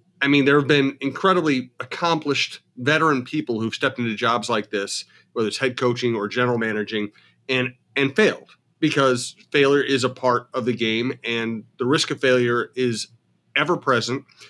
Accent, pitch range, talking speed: American, 120-145 Hz, 170 wpm